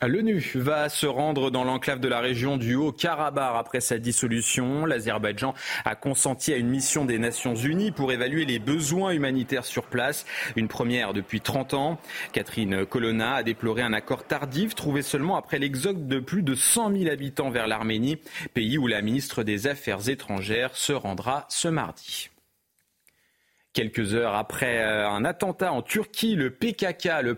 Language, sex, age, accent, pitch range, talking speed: French, male, 30-49, French, 115-155 Hz, 165 wpm